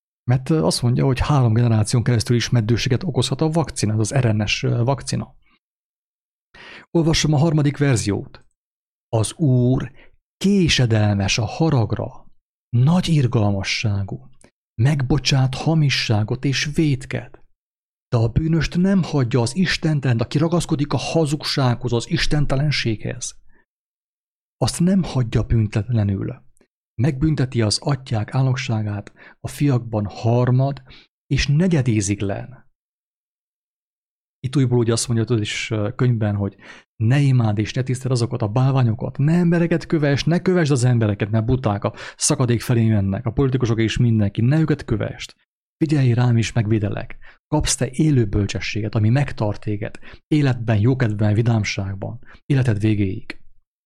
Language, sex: English, male